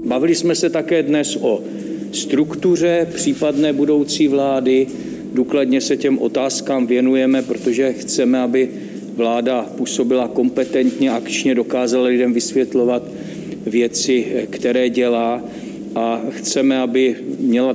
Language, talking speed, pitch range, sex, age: Czech, 110 wpm, 120-140 Hz, male, 50-69